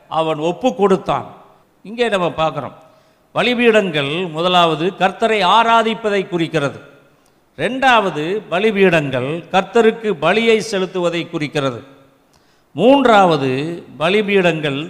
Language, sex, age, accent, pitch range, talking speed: Tamil, male, 50-69, native, 155-225 Hz, 75 wpm